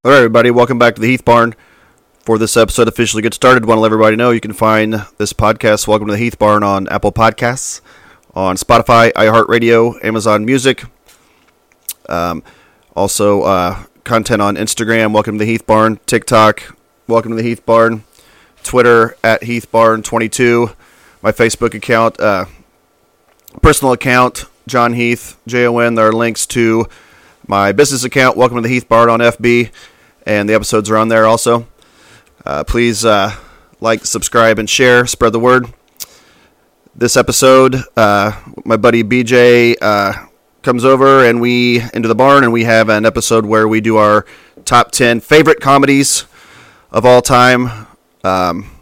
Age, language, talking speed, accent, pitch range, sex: 30-49, English, 160 wpm, American, 110-120 Hz, male